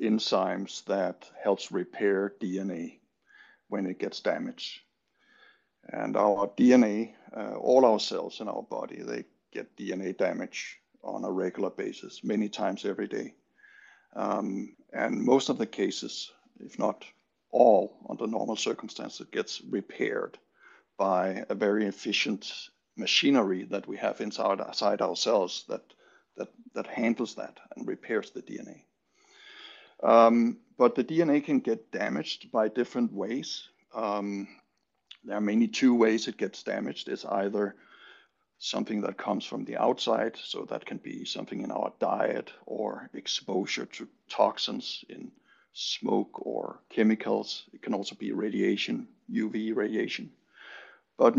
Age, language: 60-79, English